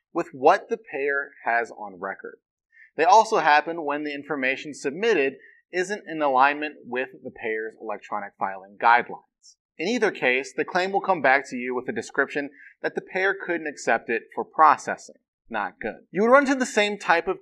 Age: 30-49